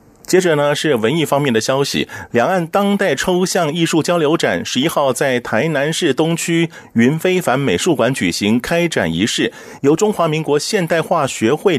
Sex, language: male, Chinese